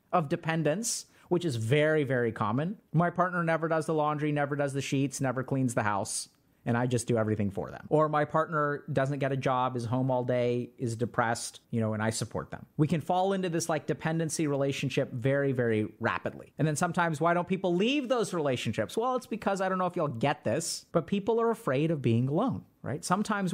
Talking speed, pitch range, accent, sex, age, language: 220 wpm, 125-160 Hz, American, male, 30-49, English